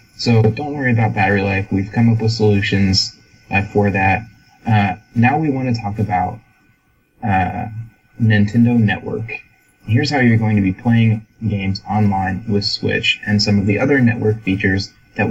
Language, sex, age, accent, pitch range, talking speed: English, male, 20-39, American, 105-120 Hz, 170 wpm